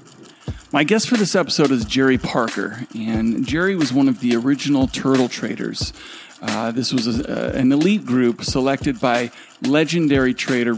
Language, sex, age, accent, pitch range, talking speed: English, male, 40-59, American, 120-145 Hz, 150 wpm